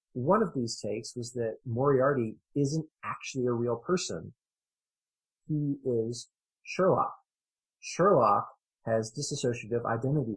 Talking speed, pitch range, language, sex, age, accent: 110 wpm, 120-160 Hz, English, male, 30-49, American